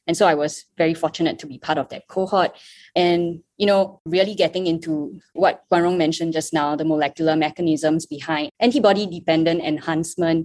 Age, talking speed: 20-39, 180 wpm